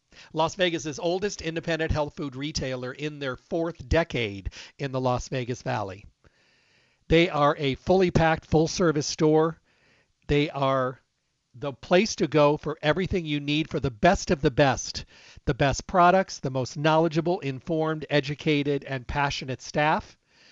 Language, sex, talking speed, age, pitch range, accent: English, male, 150 wpm, 40-59, 140-180 Hz, American